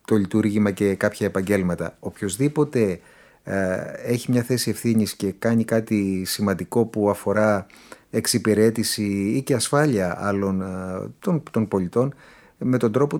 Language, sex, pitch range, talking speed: Greek, male, 105-125 Hz, 130 wpm